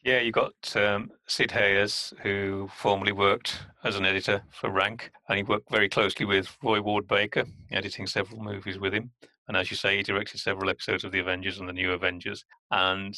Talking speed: 195 wpm